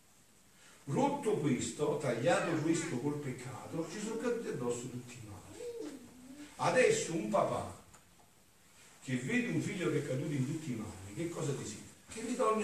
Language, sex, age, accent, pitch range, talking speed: Italian, male, 50-69, native, 130-210 Hz, 150 wpm